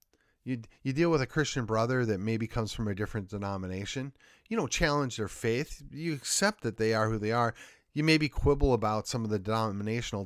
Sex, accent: male, American